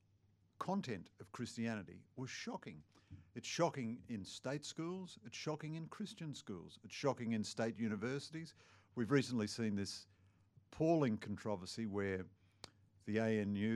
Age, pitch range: 50-69, 100-115 Hz